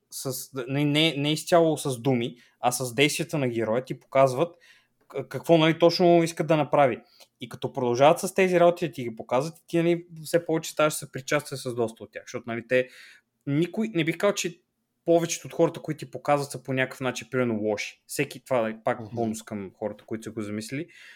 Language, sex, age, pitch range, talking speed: Bulgarian, male, 20-39, 125-155 Hz, 210 wpm